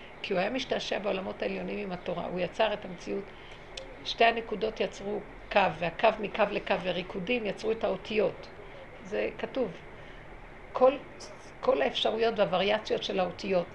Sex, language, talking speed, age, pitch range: female, Hebrew, 135 wpm, 50-69, 185-235 Hz